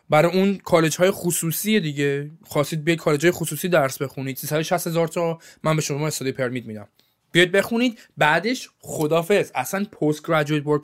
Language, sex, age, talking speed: Persian, male, 20-39, 150 wpm